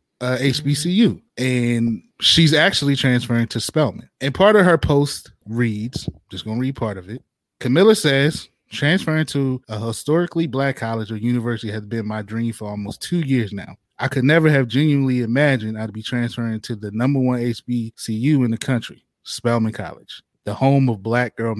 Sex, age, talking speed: male, 20-39, 175 wpm